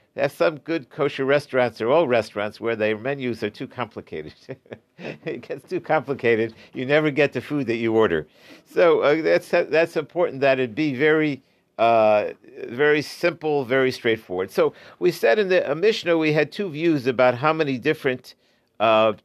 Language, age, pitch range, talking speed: English, 50-69, 120-155 Hz, 175 wpm